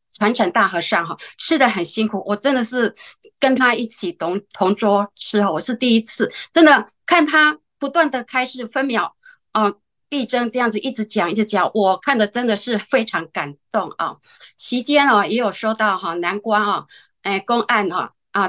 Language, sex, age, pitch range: Chinese, female, 20-39, 195-255 Hz